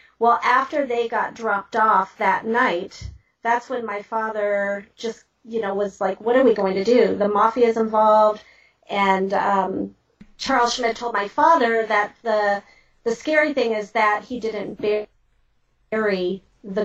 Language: English